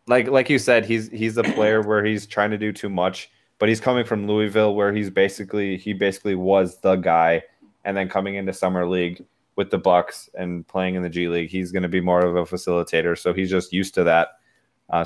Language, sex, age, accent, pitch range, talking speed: English, male, 20-39, American, 85-100 Hz, 230 wpm